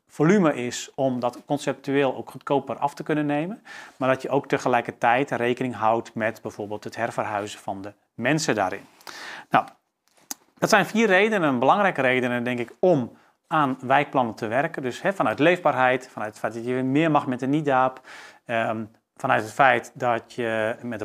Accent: Dutch